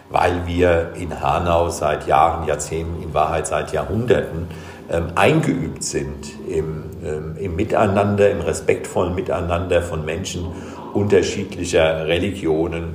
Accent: German